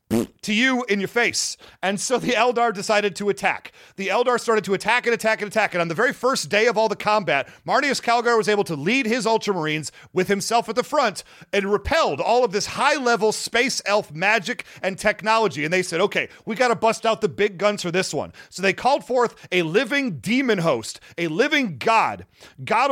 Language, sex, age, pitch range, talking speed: English, male, 40-59, 195-240 Hz, 210 wpm